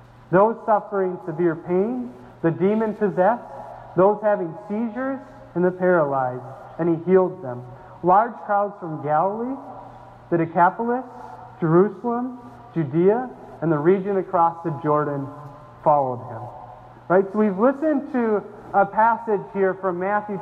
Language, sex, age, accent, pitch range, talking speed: English, male, 40-59, American, 165-210 Hz, 125 wpm